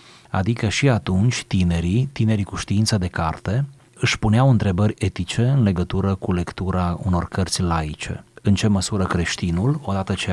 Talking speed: 150 wpm